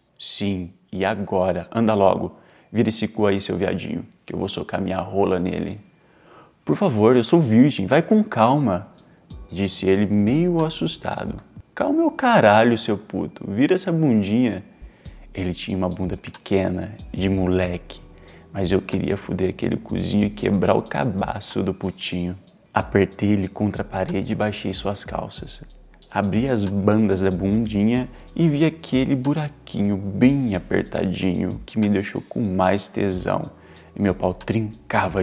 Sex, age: male, 20-39